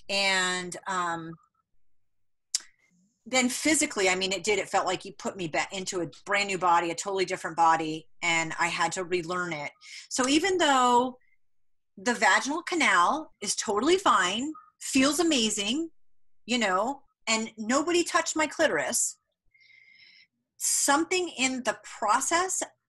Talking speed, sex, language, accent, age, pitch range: 135 wpm, female, English, American, 40-59, 180-260 Hz